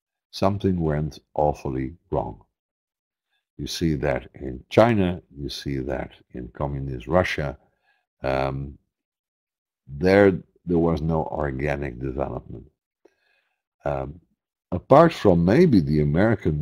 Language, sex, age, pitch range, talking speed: English, male, 60-79, 65-85 Hz, 100 wpm